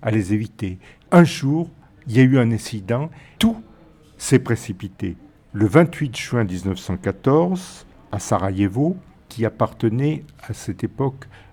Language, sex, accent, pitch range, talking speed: French, male, French, 100-140 Hz, 130 wpm